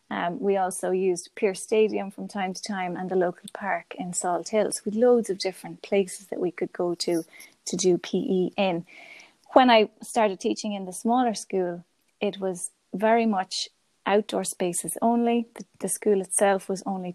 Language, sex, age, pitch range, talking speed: English, female, 20-39, 180-210 Hz, 180 wpm